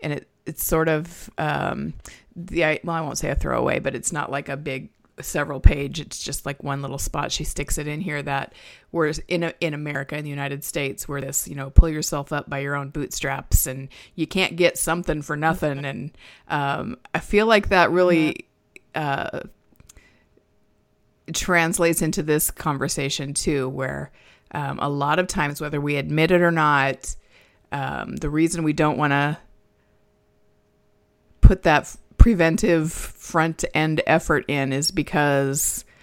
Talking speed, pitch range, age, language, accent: 170 wpm, 140-165 Hz, 30-49, English, American